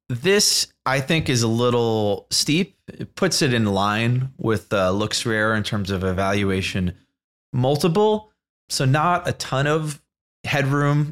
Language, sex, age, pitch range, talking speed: English, male, 20-39, 95-135 Hz, 145 wpm